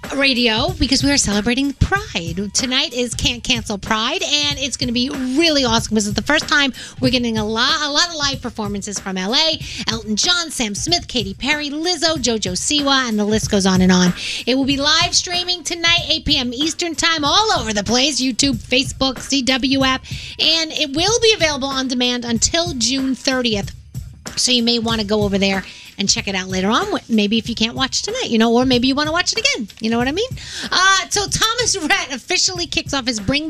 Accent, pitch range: American, 230-320 Hz